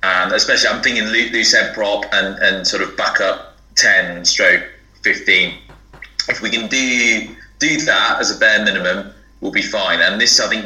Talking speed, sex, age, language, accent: 180 wpm, male, 20-39, English, British